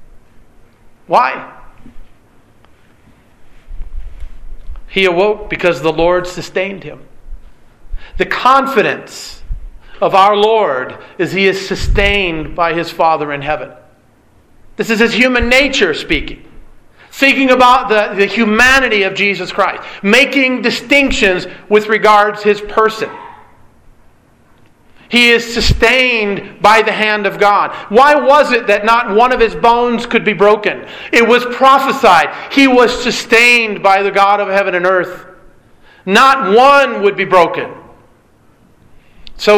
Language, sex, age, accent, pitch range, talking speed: English, male, 50-69, American, 185-240 Hz, 125 wpm